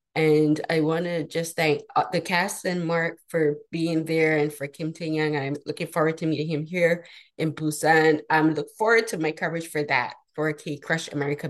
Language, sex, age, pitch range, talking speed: English, female, 20-39, 145-165 Hz, 200 wpm